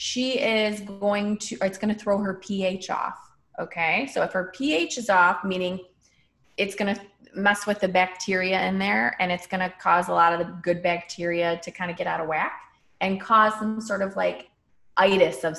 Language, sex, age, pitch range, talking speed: English, female, 30-49, 180-220 Hz, 210 wpm